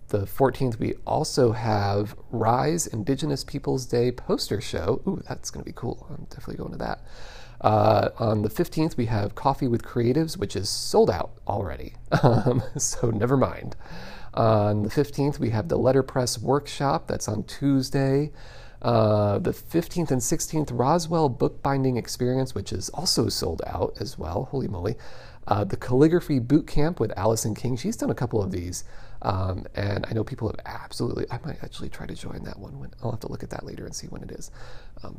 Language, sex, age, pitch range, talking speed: English, male, 40-59, 110-135 Hz, 190 wpm